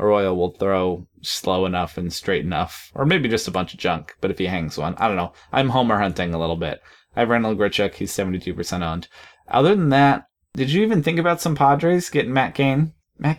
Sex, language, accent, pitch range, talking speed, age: male, English, American, 90-125 Hz, 225 wpm, 20-39